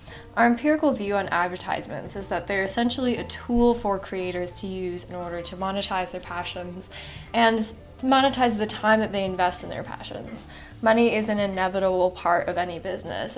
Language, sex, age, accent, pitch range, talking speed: English, female, 10-29, American, 190-235 Hz, 175 wpm